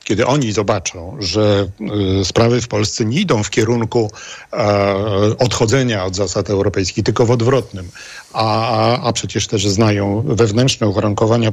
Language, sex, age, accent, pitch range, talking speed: Polish, male, 50-69, native, 105-135 Hz, 130 wpm